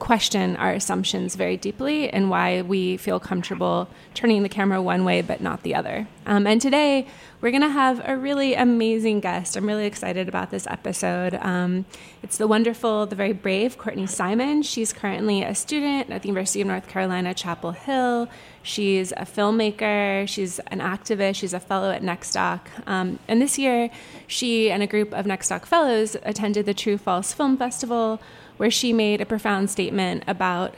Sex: female